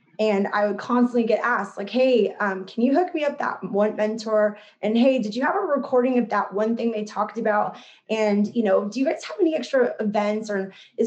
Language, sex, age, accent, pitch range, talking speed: English, female, 20-39, American, 200-240 Hz, 235 wpm